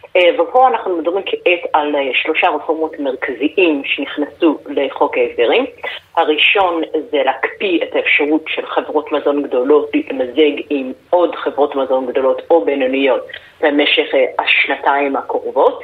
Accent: native